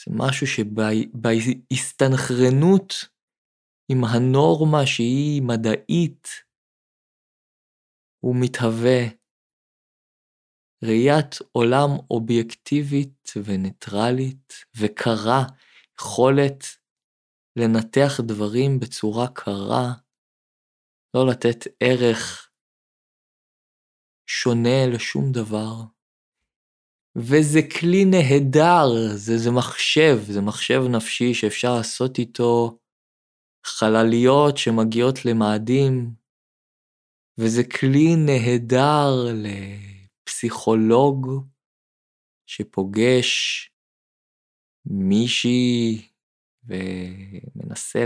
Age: 20-39